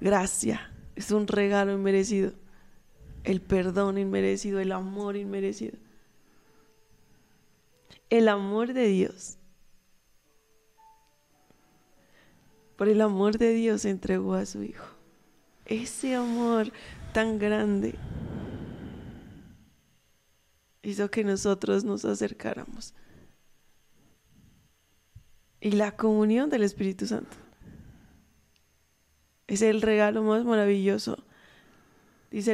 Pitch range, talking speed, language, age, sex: 195-225 Hz, 85 wpm, Spanish, 20-39, female